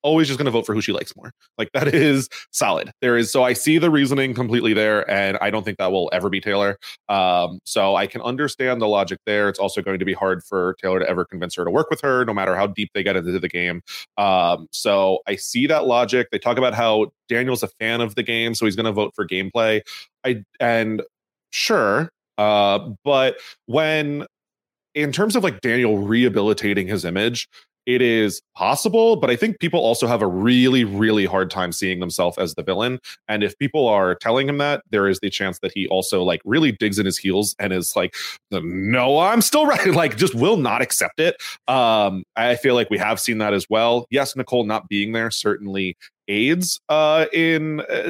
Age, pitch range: 30-49, 100-140 Hz